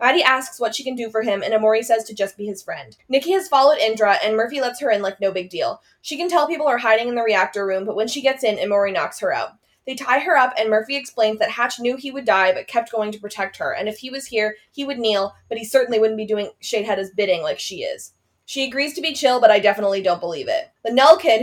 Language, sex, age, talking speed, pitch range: English, female, 20-39, 280 wpm, 205-270 Hz